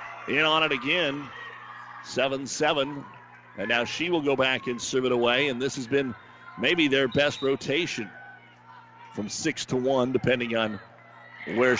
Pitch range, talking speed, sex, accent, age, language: 125-145 Hz, 140 wpm, male, American, 50-69, English